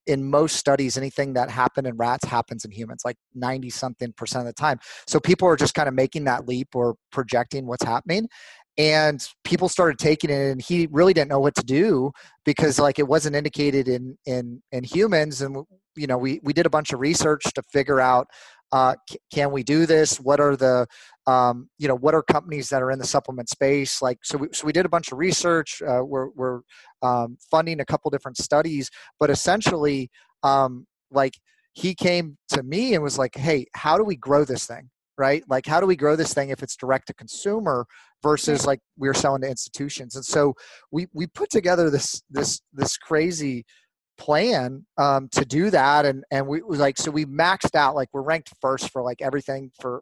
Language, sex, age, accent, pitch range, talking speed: English, male, 30-49, American, 130-155 Hz, 210 wpm